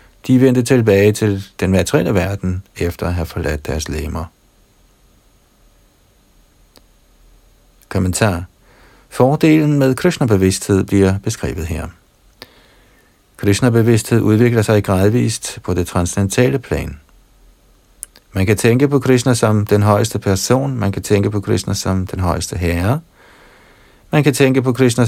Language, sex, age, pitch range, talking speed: Danish, male, 50-69, 90-125 Hz, 120 wpm